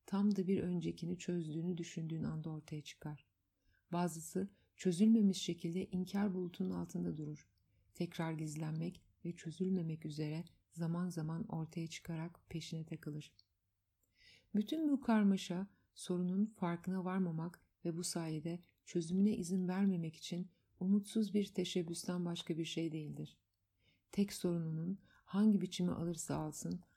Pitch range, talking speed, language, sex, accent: 155-185 Hz, 120 wpm, Turkish, female, native